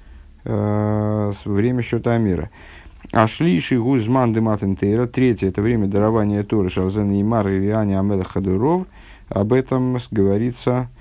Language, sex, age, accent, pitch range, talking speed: Russian, male, 50-69, native, 95-125 Hz, 120 wpm